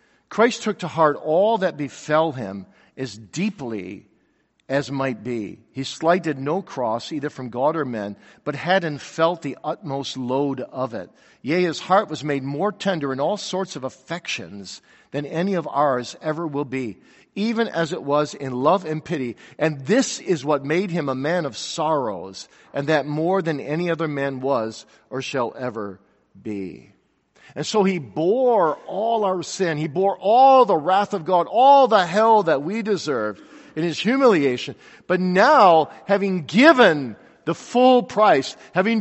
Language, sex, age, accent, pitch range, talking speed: English, male, 50-69, American, 140-195 Hz, 170 wpm